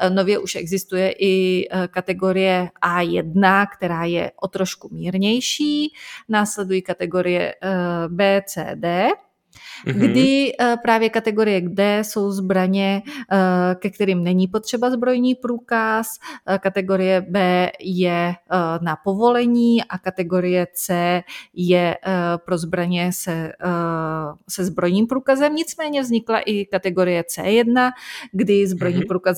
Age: 30-49